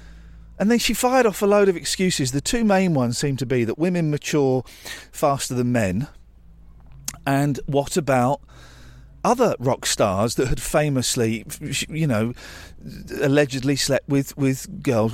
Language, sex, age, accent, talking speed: English, male, 40-59, British, 150 wpm